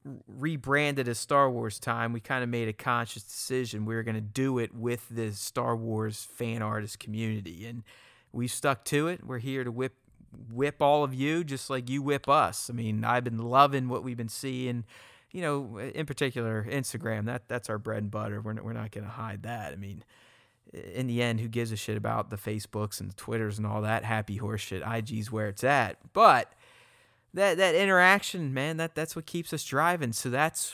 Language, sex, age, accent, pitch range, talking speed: English, male, 30-49, American, 115-135 Hz, 215 wpm